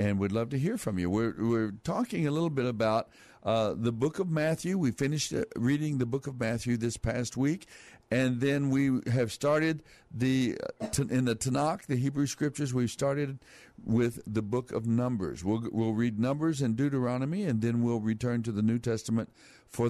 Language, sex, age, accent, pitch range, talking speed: English, male, 60-79, American, 105-135 Hz, 190 wpm